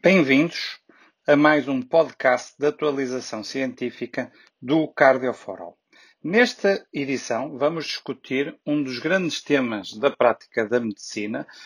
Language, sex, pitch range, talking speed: Portuguese, male, 120-145 Hz, 115 wpm